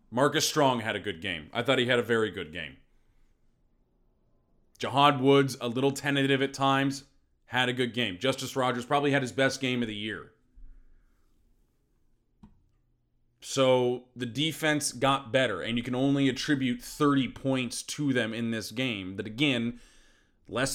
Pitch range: 115-135 Hz